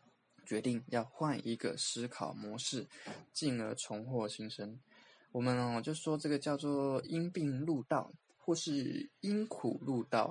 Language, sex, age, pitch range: Chinese, male, 20-39, 120-155 Hz